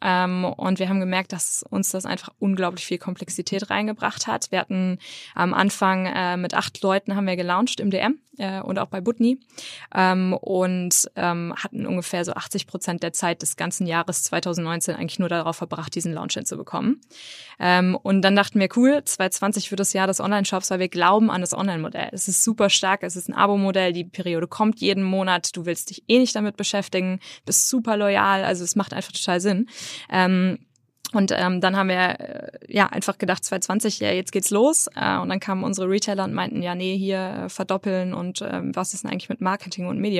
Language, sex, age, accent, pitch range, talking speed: German, female, 20-39, German, 180-200 Hz, 205 wpm